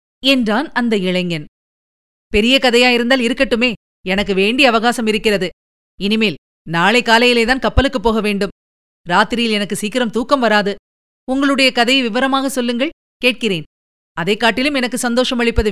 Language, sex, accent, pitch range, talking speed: Tamil, female, native, 205-255 Hz, 120 wpm